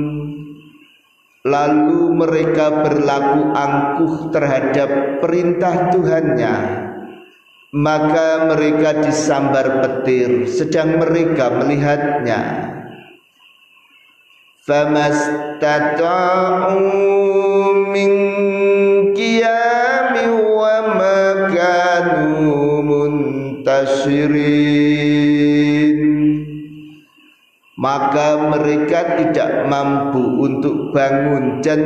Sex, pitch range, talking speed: male, 145-185 Hz, 45 wpm